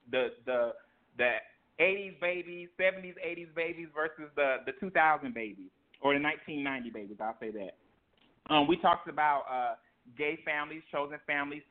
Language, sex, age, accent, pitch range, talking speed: English, male, 30-49, American, 130-165 Hz, 150 wpm